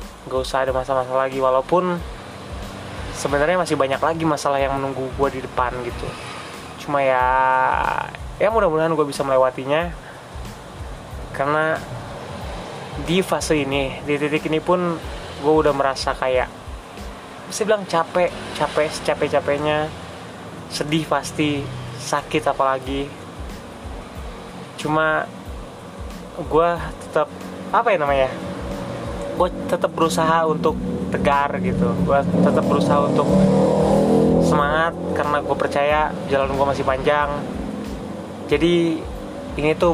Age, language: 20-39, Indonesian